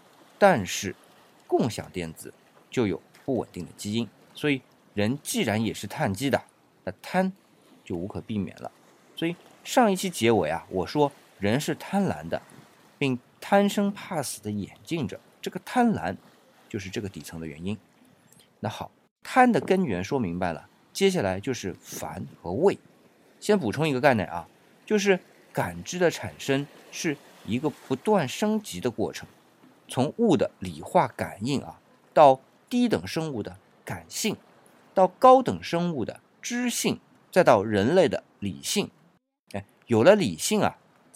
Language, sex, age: Chinese, male, 50-69